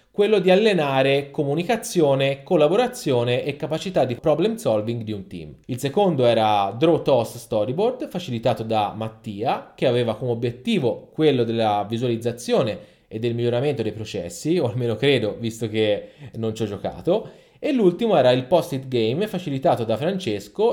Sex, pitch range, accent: male, 110-145 Hz, native